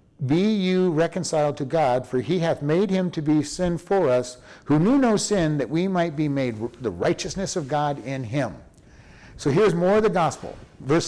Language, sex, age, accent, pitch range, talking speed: English, male, 50-69, American, 135-185 Hz, 200 wpm